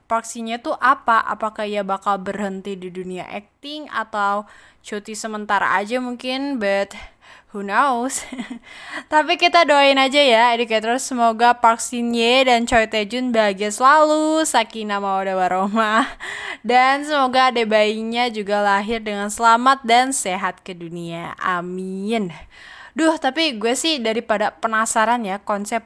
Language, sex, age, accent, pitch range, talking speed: Indonesian, female, 10-29, native, 205-265 Hz, 130 wpm